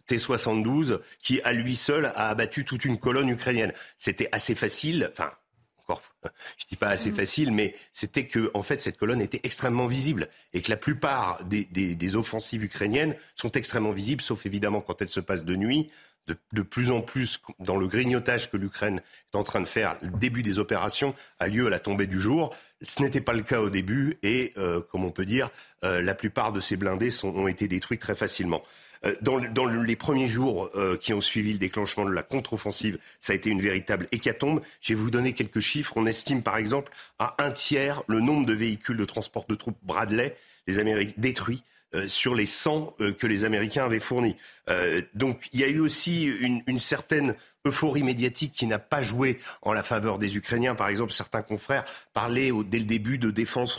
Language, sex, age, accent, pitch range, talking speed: French, male, 40-59, French, 105-135 Hz, 210 wpm